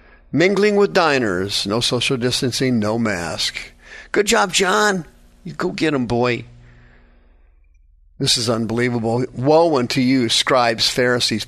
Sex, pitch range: male, 100-140 Hz